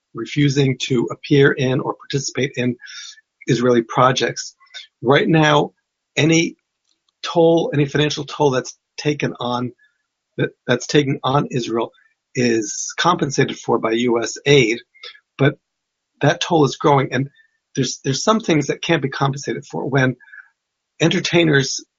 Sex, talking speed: male, 130 wpm